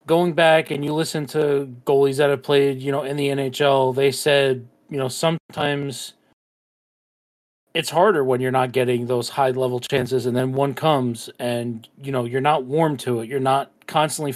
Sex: male